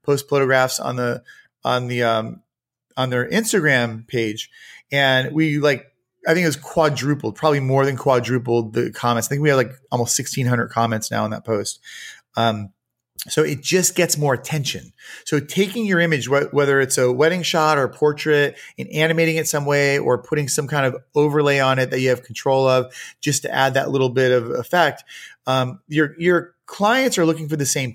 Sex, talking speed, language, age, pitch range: male, 195 wpm, English, 30-49, 130-155 Hz